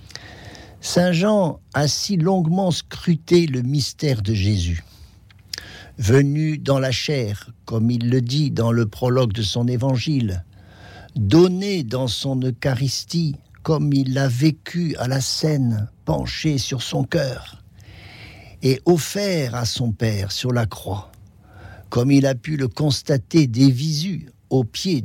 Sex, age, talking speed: male, 50-69, 135 wpm